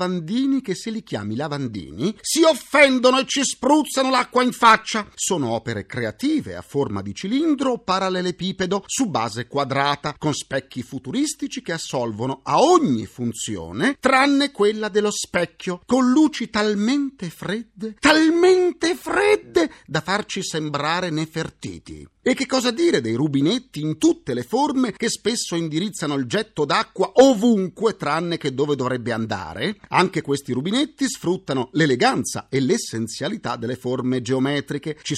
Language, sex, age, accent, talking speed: Italian, male, 40-59, native, 135 wpm